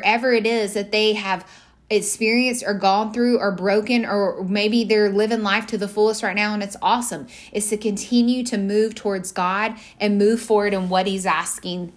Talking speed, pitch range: 190 wpm, 185-210 Hz